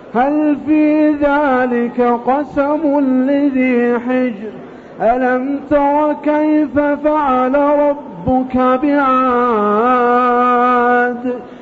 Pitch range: 250-285 Hz